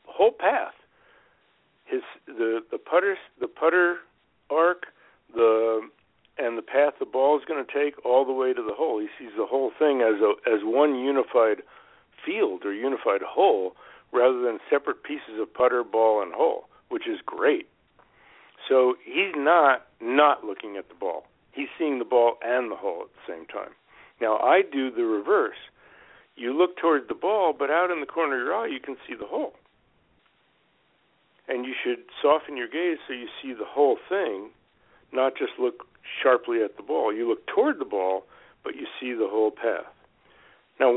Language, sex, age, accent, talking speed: English, male, 60-79, American, 180 wpm